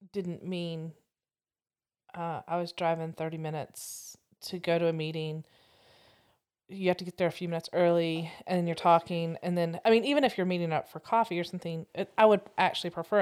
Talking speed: 190 wpm